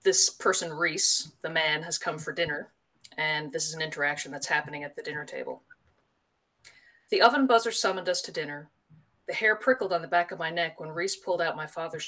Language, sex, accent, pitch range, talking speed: English, female, American, 150-190 Hz, 210 wpm